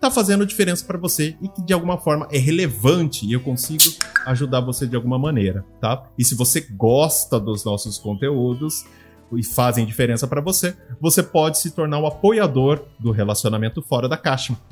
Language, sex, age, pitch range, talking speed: Portuguese, male, 30-49, 115-145 Hz, 180 wpm